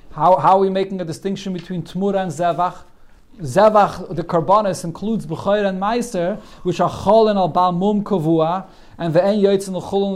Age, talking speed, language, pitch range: 40-59, 185 wpm, English, 155-195 Hz